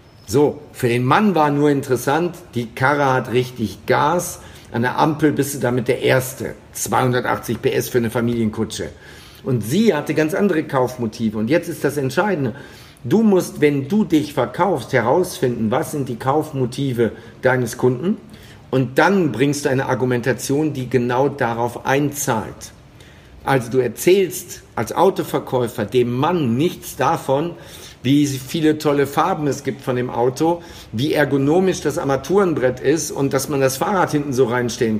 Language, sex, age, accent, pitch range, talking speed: German, male, 50-69, German, 120-155 Hz, 155 wpm